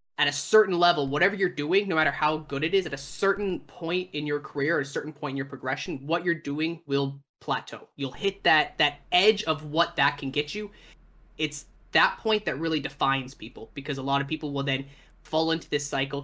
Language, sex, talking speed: English, male, 225 wpm